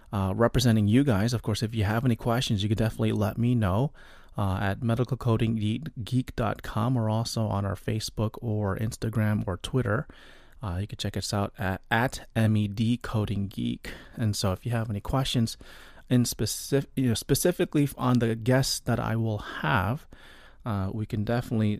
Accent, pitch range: American, 110-130 Hz